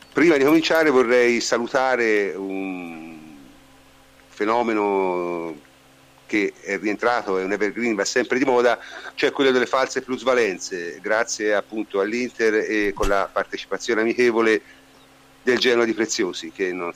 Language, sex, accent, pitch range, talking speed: Italian, male, native, 95-130 Hz, 125 wpm